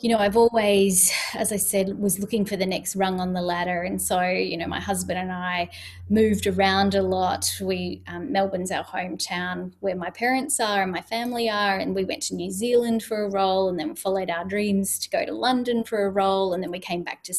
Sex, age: female, 10-29